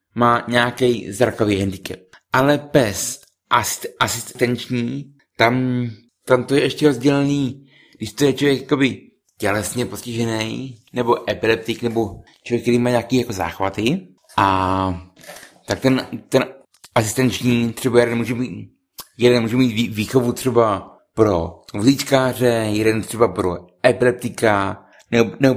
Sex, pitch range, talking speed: male, 110-135 Hz, 120 wpm